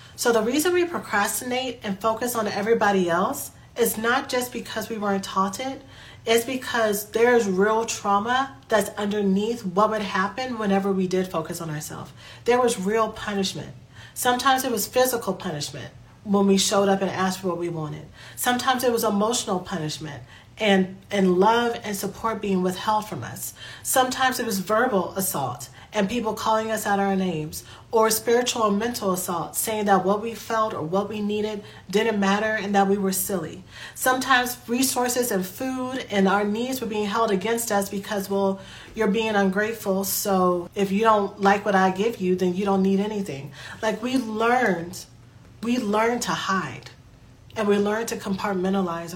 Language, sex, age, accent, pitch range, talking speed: English, female, 40-59, American, 190-225 Hz, 175 wpm